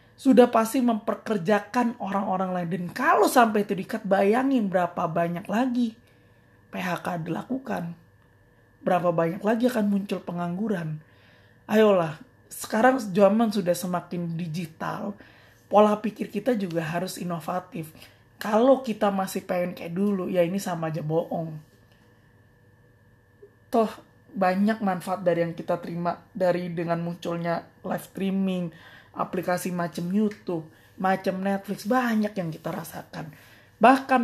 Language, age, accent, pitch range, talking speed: Indonesian, 20-39, native, 170-220 Hz, 115 wpm